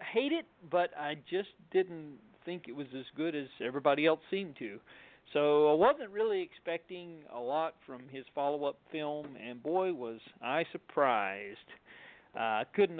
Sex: male